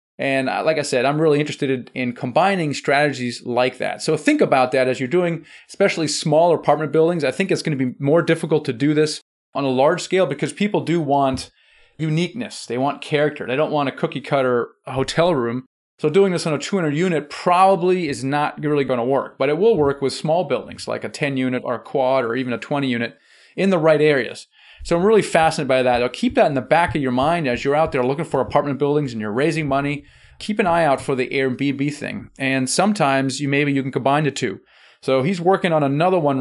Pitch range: 130-155 Hz